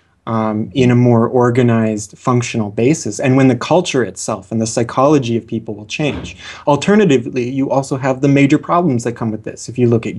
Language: English